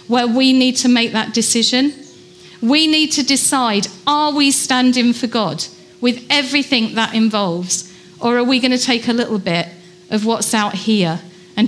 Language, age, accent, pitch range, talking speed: English, 40-59, British, 195-255 Hz, 175 wpm